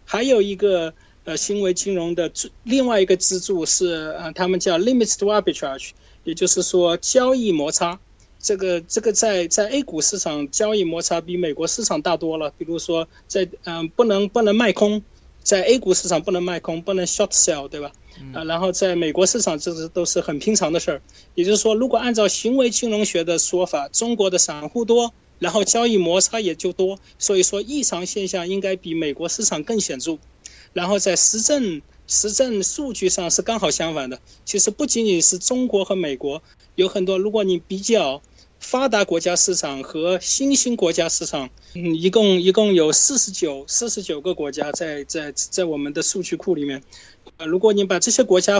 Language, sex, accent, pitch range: Chinese, male, native, 165-210 Hz